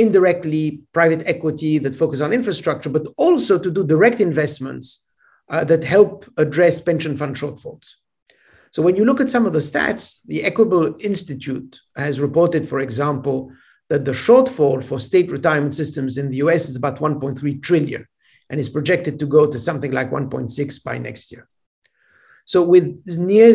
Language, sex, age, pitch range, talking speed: English, male, 50-69, 145-190 Hz, 165 wpm